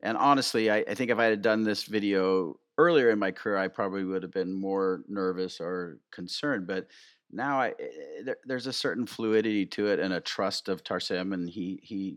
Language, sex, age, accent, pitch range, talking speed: English, male, 40-59, American, 95-115 Hz, 205 wpm